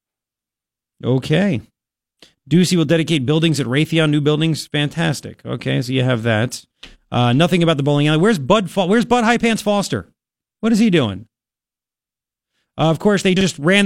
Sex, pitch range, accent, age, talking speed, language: male, 140-190 Hz, American, 40-59, 170 wpm, English